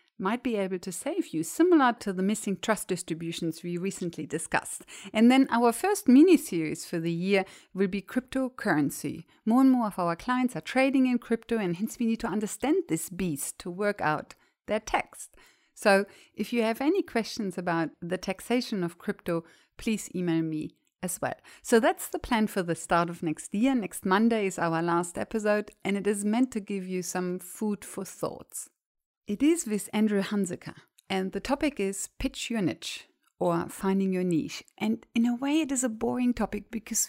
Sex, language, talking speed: female, English, 195 wpm